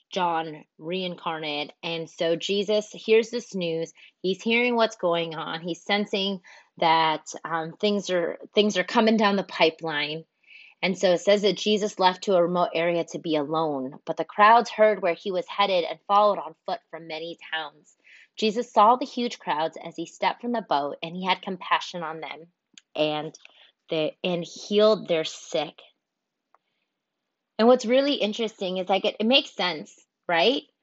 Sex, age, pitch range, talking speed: female, 30-49, 170-215 Hz, 170 wpm